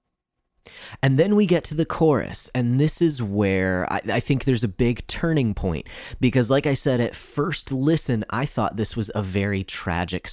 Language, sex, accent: English, male, American